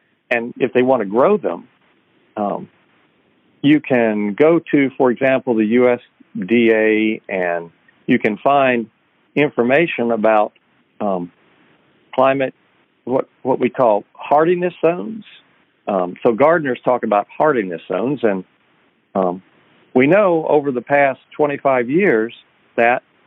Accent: American